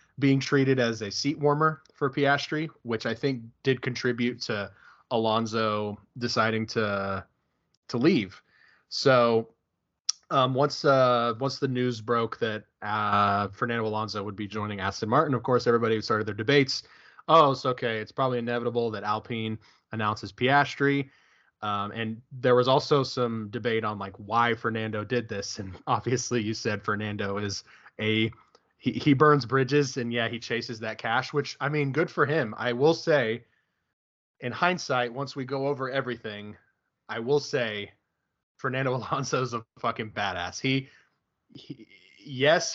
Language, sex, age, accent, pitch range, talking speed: English, male, 20-39, American, 110-140 Hz, 155 wpm